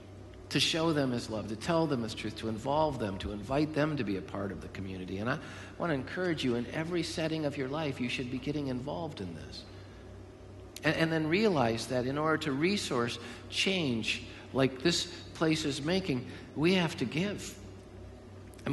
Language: English